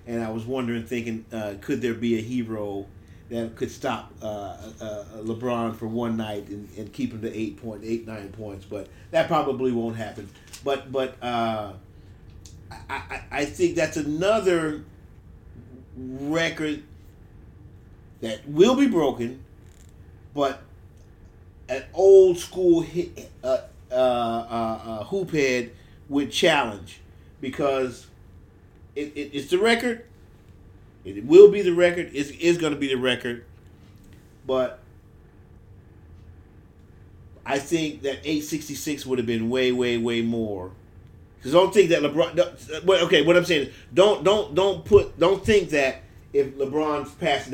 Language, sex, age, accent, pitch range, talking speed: English, male, 40-59, American, 100-140 Hz, 140 wpm